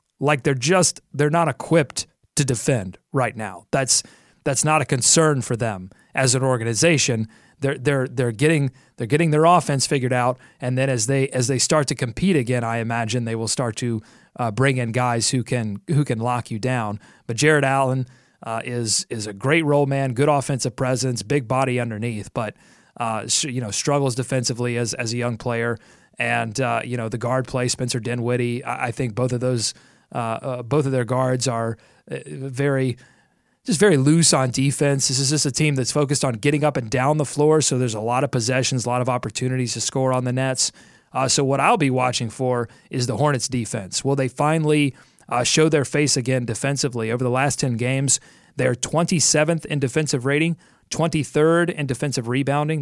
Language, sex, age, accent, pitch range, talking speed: English, male, 30-49, American, 120-145 Hz, 200 wpm